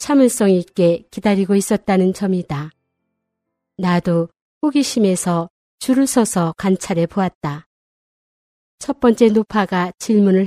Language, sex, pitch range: Korean, female, 185-240 Hz